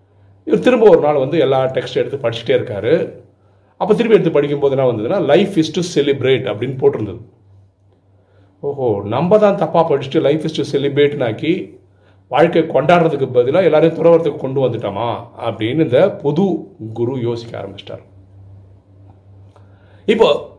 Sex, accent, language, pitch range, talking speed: male, native, Tamil, 100-160 Hz, 100 wpm